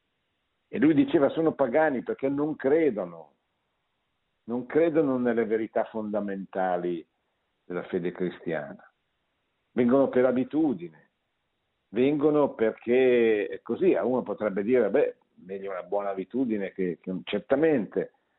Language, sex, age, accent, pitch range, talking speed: Italian, male, 50-69, native, 95-130 Hz, 110 wpm